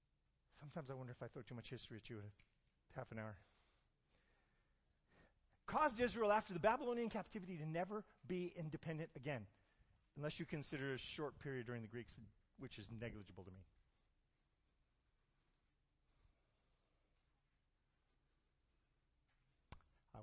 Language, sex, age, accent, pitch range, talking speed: English, male, 50-69, American, 105-165 Hz, 120 wpm